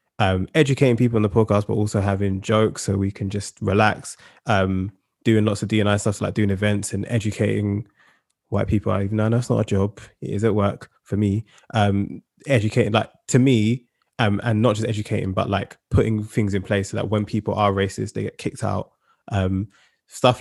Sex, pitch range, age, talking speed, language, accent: male, 100-110 Hz, 20-39, 205 wpm, English, British